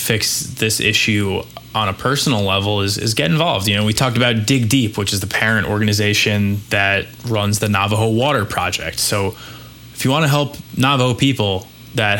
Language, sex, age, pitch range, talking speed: English, male, 20-39, 105-125 Hz, 185 wpm